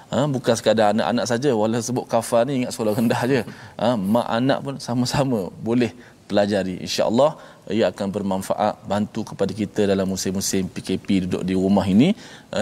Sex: male